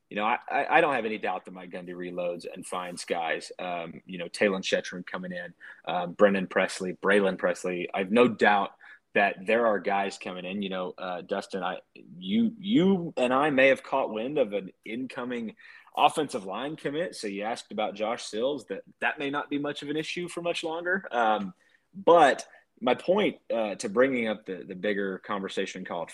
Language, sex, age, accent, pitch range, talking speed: English, male, 30-49, American, 95-130 Hz, 200 wpm